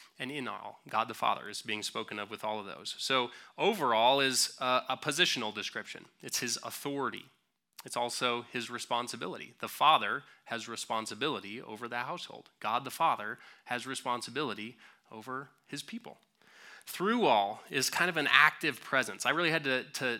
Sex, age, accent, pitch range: male, 20-39, American, 110-135 Hz